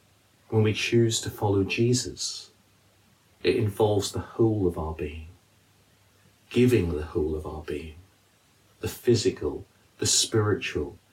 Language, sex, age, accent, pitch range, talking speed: English, male, 50-69, British, 90-105 Hz, 125 wpm